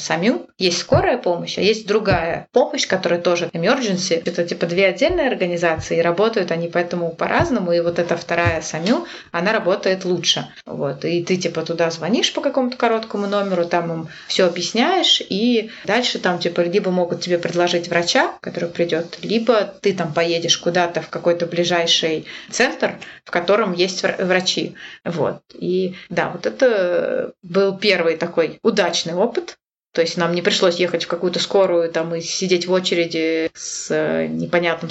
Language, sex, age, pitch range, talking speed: Russian, female, 20-39, 170-215 Hz, 155 wpm